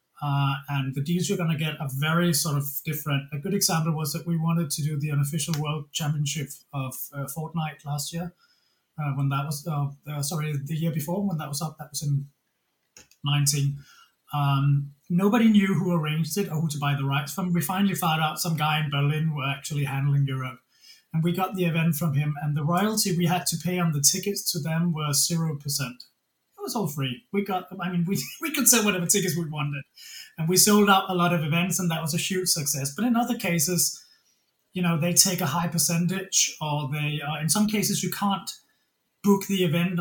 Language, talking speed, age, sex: English, 220 wpm, 30-49, male